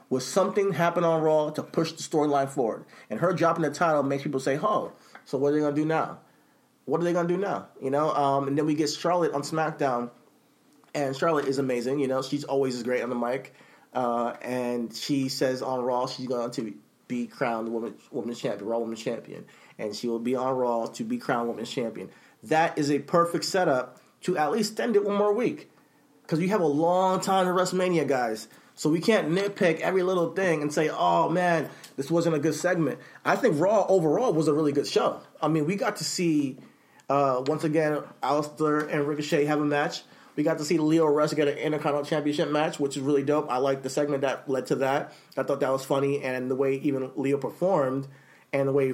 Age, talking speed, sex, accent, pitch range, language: 30-49, 225 wpm, male, American, 135-165 Hz, English